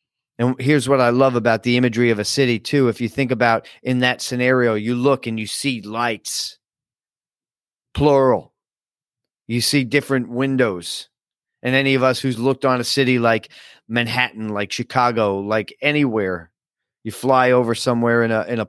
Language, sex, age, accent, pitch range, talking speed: English, male, 40-59, American, 115-130 Hz, 170 wpm